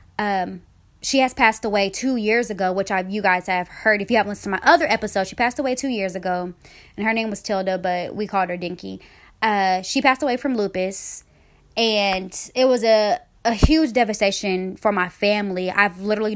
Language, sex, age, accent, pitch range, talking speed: English, female, 20-39, American, 185-225 Hz, 205 wpm